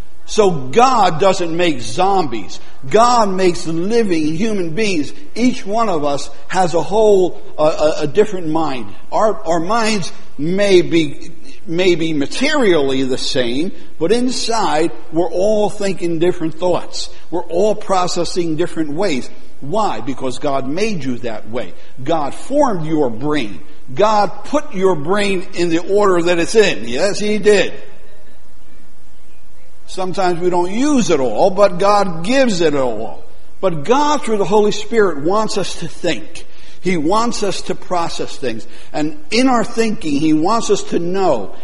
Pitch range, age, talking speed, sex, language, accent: 150-205 Hz, 60-79, 150 wpm, male, English, American